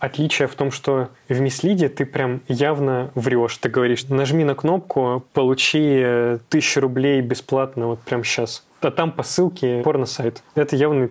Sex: male